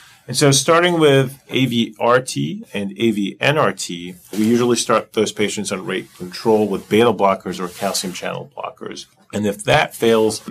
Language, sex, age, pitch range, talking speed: English, male, 30-49, 95-120 Hz, 150 wpm